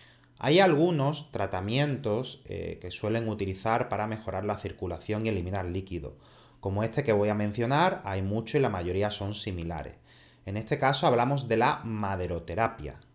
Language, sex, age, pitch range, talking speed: Spanish, male, 30-49, 95-130 Hz, 155 wpm